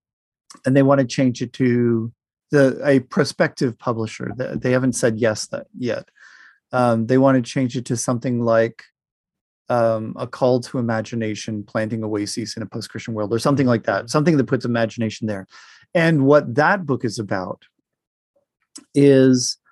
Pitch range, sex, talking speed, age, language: 115-140 Hz, male, 165 wpm, 40-59, Slovak